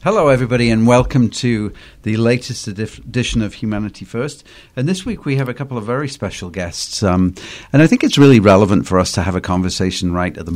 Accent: British